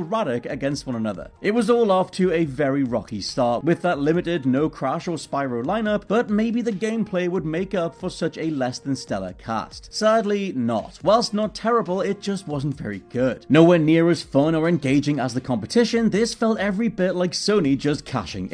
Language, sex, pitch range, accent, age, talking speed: English, male, 140-200 Hz, British, 30-49, 185 wpm